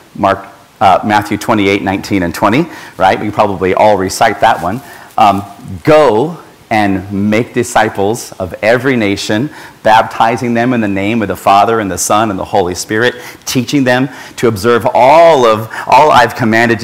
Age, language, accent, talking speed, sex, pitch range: 40-59, English, American, 170 wpm, male, 100-120 Hz